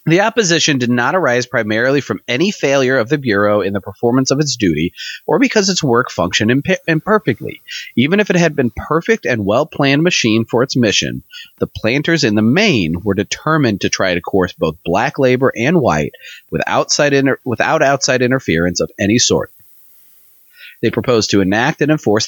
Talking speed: 175 wpm